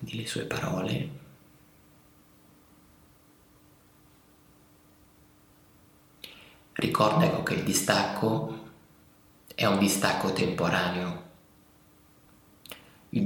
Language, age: Italian, 30-49